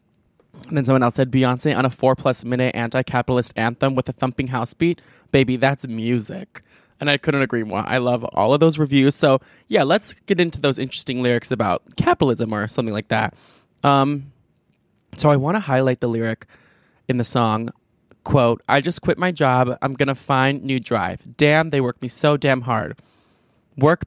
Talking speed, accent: 185 wpm, American